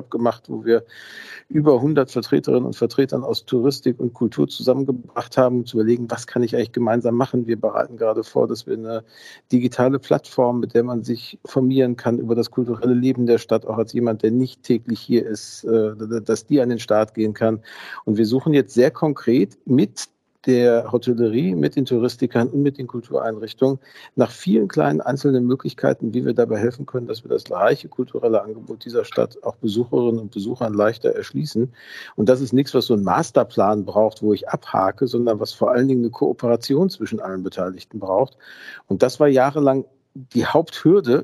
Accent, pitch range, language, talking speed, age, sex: German, 115-130 Hz, German, 185 wpm, 50-69, male